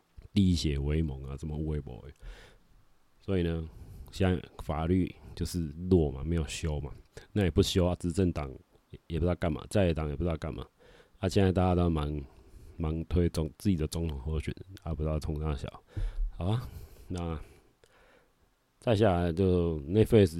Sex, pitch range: male, 80-95 Hz